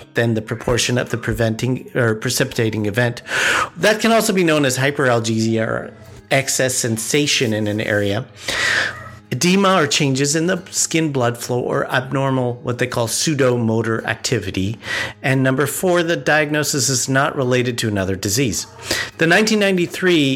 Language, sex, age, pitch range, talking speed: English, male, 50-69, 115-145 Hz, 145 wpm